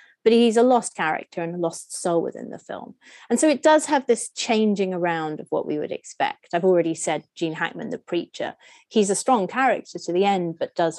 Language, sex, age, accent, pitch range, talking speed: English, female, 30-49, British, 175-225 Hz, 225 wpm